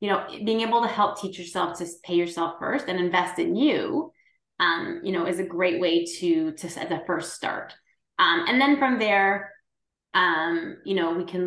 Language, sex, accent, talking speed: English, female, American, 205 wpm